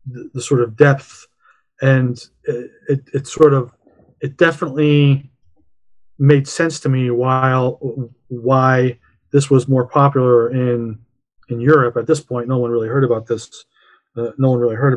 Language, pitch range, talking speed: English, 120-135 Hz, 155 wpm